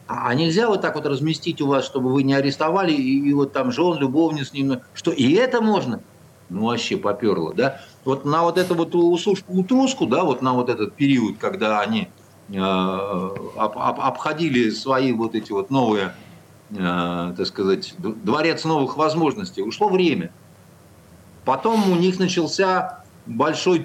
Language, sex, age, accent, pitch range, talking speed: Russian, male, 50-69, native, 125-170 Hz, 165 wpm